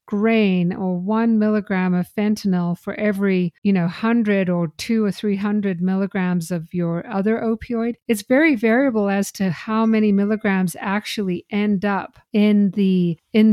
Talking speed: 150 wpm